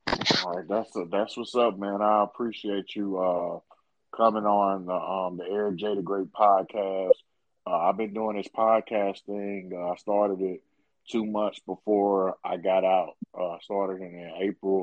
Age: 20-39